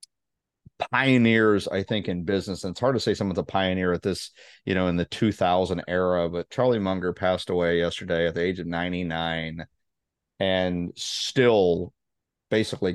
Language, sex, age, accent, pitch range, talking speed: English, male, 30-49, American, 90-110 Hz, 160 wpm